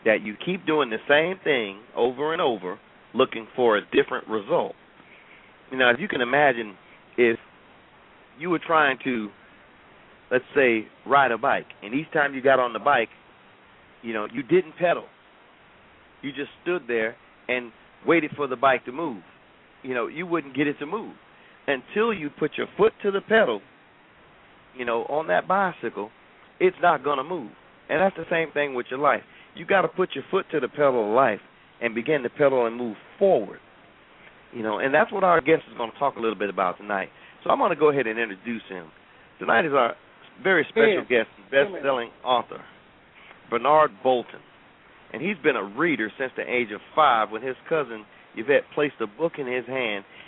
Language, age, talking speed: English, 40-59, 190 wpm